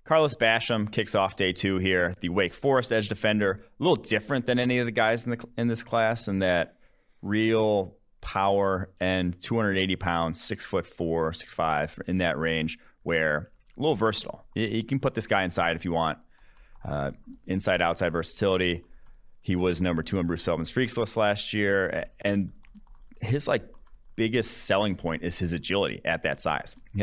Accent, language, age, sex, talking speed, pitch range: American, English, 30-49, male, 180 wpm, 85-110 Hz